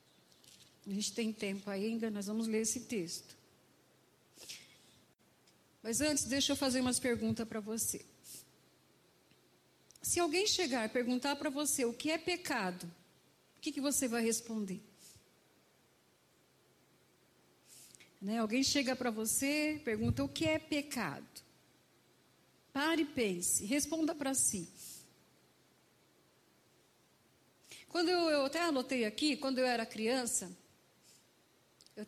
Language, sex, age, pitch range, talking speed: Portuguese, female, 50-69, 215-275 Hz, 120 wpm